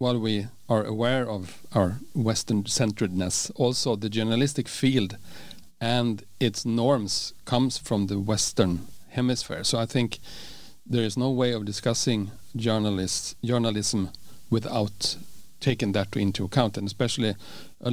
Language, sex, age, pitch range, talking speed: English, male, 40-59, 105-125 Hz, 125 wpm